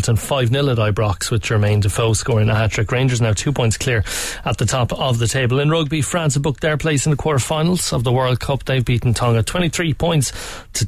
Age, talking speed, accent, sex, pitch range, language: 30-49, 225 wpm, Irish, male, 105-130 Hz, English